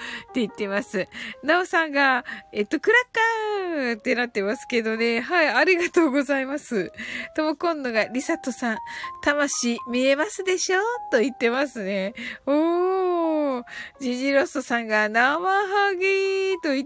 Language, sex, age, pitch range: Japanese, female, 20-39, 225-350 Hz